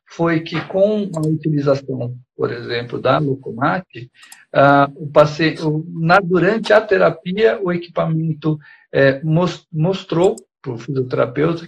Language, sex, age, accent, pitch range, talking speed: Portuguese, male, 50-69, Brazilian, 140-185 Hz, 120 wpm